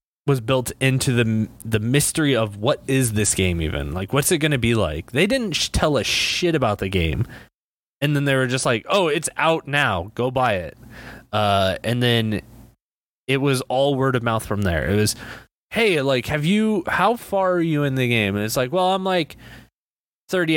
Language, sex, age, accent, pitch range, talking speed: English, male, 20-39, American, 115-150 Hz, 210 wpm